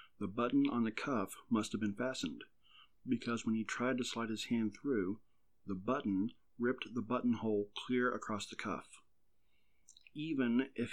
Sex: male